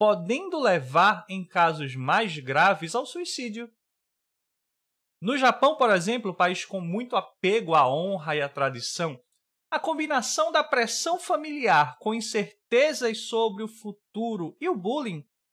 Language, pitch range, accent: Portuguese, 170-245 Hz, Brazilian